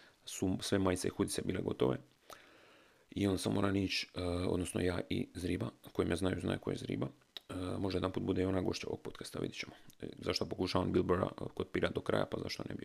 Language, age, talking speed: Croatian, 30-49, 220 wpm